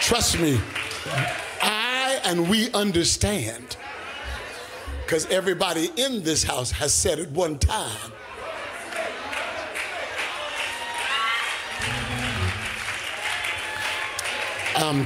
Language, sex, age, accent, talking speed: English, male, 60-79, American, 70 wpm